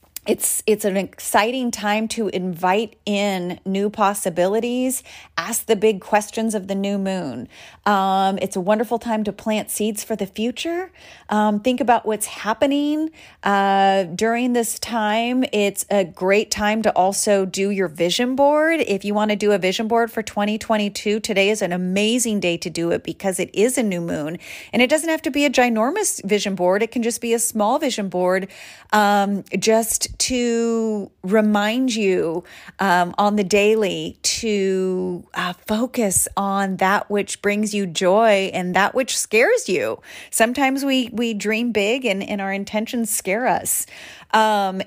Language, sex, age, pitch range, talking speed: English, female, 30-49, 190-230 Hz, 165 wpm